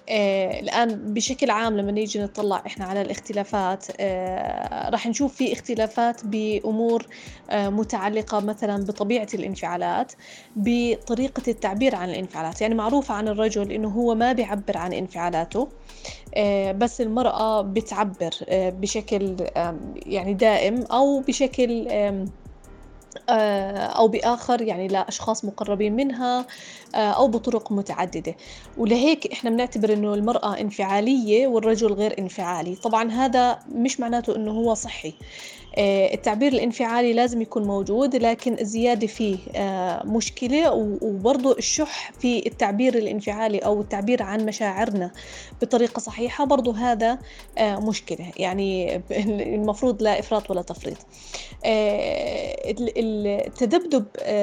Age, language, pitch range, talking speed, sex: 20-39, Arabic, 200-235 Hz, 110 wpm, female